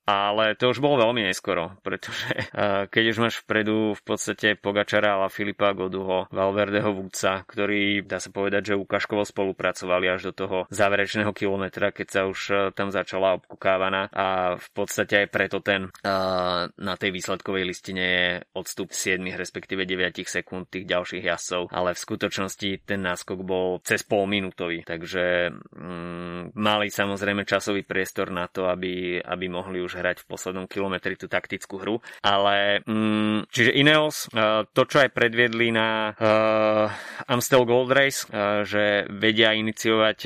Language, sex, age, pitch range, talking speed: Slovak, male, 20-39, 95-110 Hz, 155 wpm